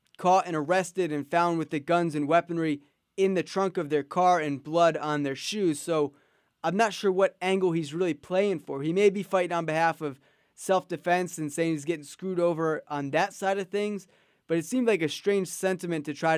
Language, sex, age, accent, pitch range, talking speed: English, male, 20-39, American, 160-195 Hz, 215 wpm